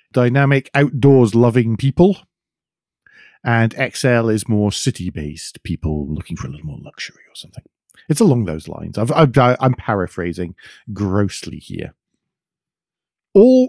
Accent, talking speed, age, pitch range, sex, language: British, 125 wpm, 40-59, 90-130 Hz, male, English